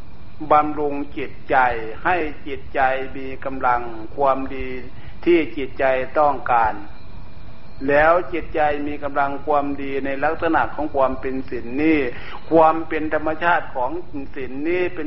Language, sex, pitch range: Thai, male, 125-160 Hz